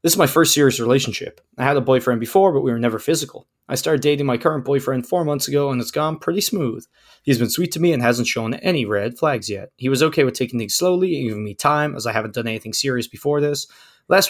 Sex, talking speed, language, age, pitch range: male, 260 wpm, English, 20-39, 115-155 Hz